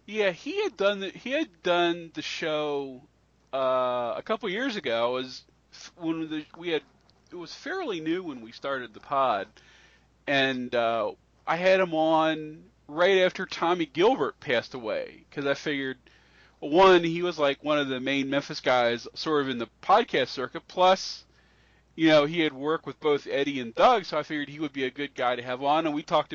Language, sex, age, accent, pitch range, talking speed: English, male, 40-59, American, 135-160 Hz, 200 wpm